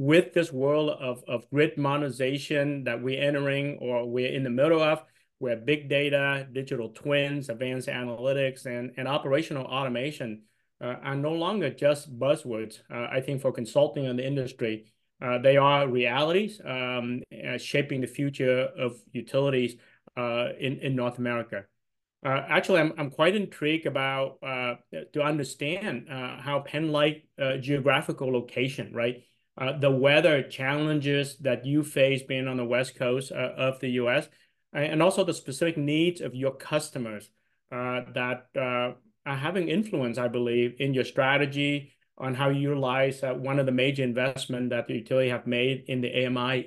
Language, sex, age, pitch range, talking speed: English, male, 30-49, 125-145 Hz, 160 wpm